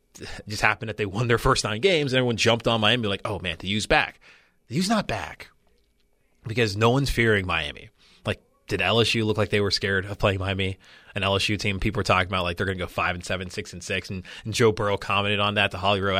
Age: 20-39